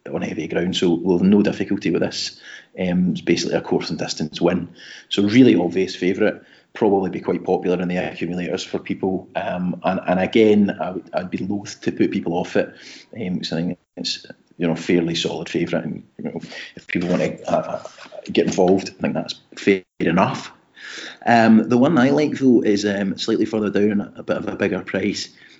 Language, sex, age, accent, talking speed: English, male, 30-49, British, 205 wpm